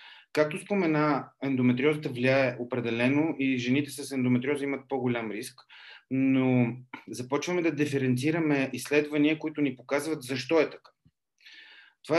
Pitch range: 130-160 Hz